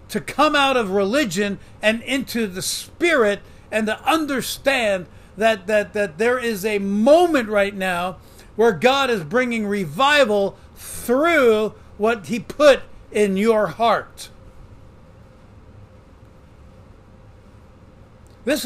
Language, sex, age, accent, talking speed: English, male, 60-79, American, 110 wpm